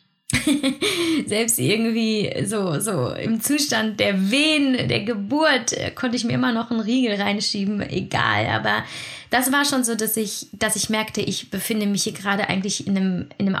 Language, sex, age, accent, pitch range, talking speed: German, female, 20-39, German, 195-230 Hz, 165 wpm